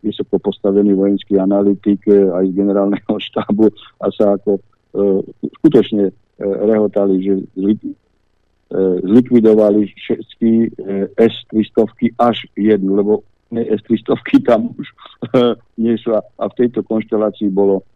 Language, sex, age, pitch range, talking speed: Slovak, male, 50-69, 95-110 Hz, 125 wpm